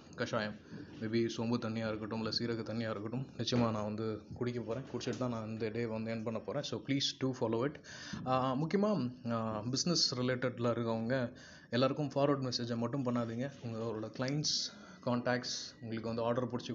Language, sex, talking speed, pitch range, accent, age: Tamil, male, 155 wpm, 115-135 Hz, native, 20-39